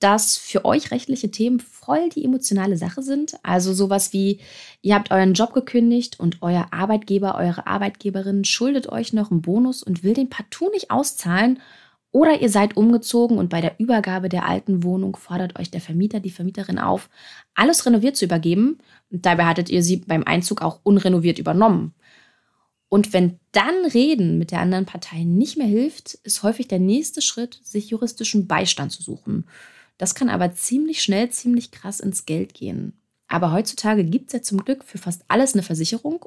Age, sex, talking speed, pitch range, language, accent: 20-39, female, 180 wpm, 180-245 Hz, German, German